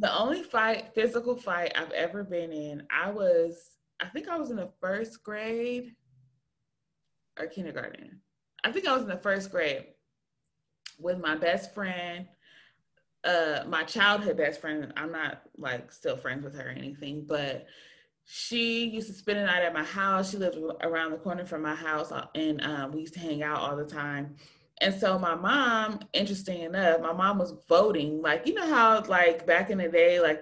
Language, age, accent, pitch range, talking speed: English, 20-39, American, 155-220 Hz, 185 wpm